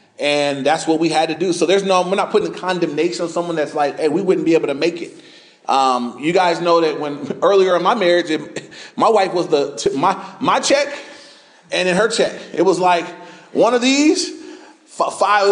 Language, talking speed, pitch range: English, 210 wpm, 175-225 Hz